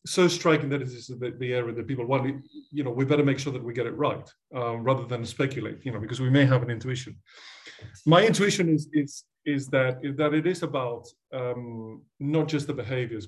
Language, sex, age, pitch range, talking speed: English, male, 30-49, 115-140 Hz, 230 wpm